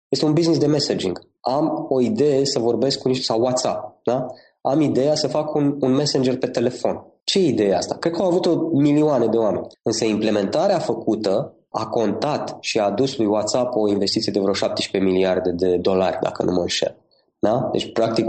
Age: 20-39